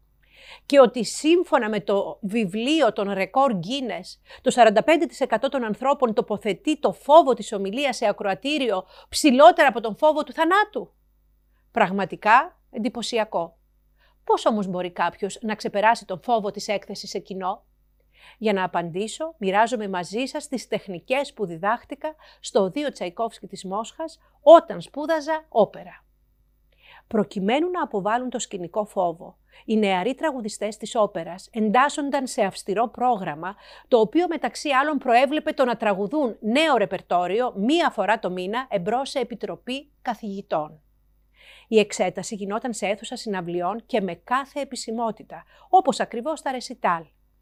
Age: 50-69